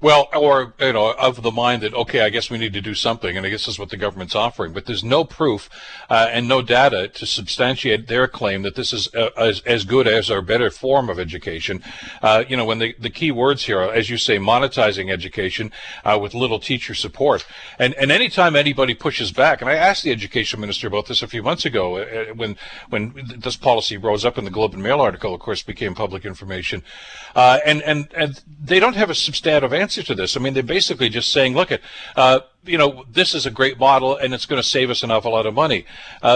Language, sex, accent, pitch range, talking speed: English, male, American, 115-145 Hz, 245 wpm